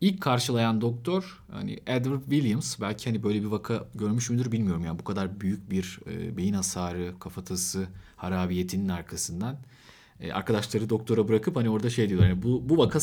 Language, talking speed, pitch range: Turkish, 165 wpm, 100-130 Hz